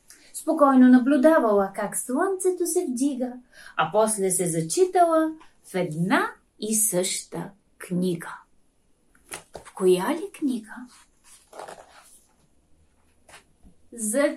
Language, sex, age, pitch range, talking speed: Bulgarian, female, 30-49, 220-320 Hz, 85 wpm